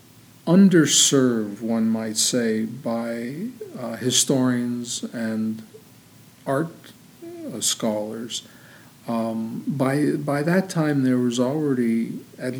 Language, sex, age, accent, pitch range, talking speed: English, male, 50-69, American, 115-140 Hz, 95 wpm